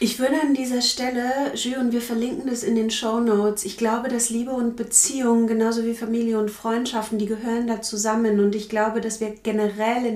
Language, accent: German, German